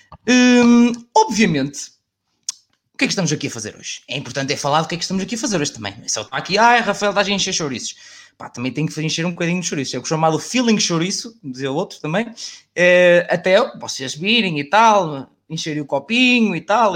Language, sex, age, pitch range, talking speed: Portuguese, male, 20-39, 170-270 Hz, 235 wpm